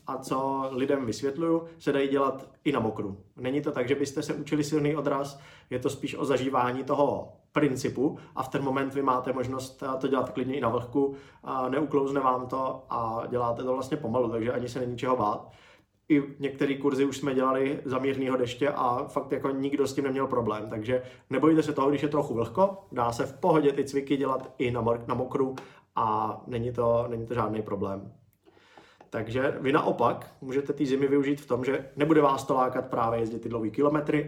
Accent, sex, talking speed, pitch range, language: native, male, 200 wpm, 120-145 Hz, Czech